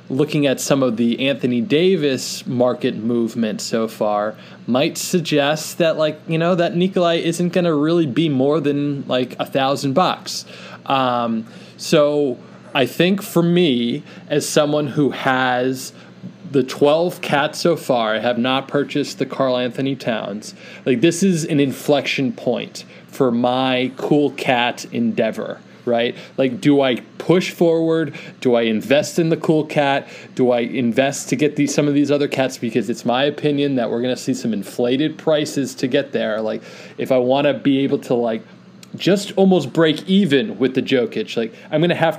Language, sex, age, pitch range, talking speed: English, male, 20-39, 125-160 Hz, 175 wpm